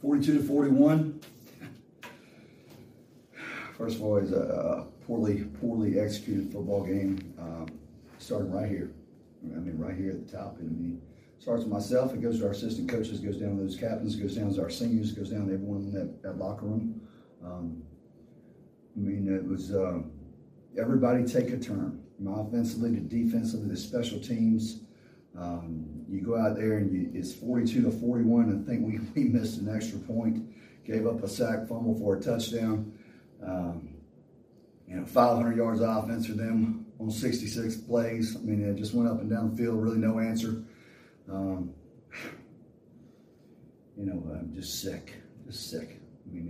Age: 40-59